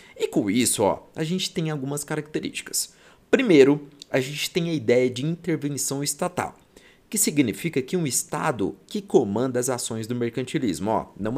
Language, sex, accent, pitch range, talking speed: Portuguese, male, Brazilian, 125-165 Hz, 165 wpm